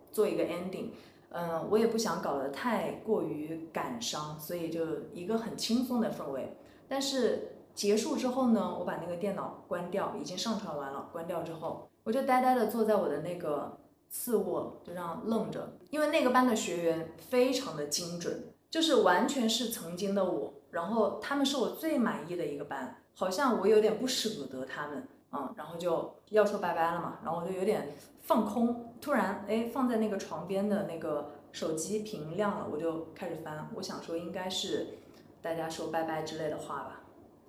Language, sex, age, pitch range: Chinese, female, 20-39, 165-230 Hz